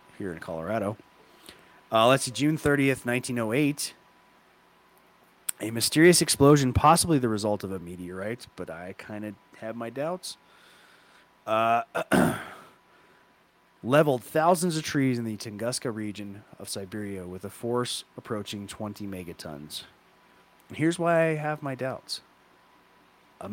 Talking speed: 125 wpm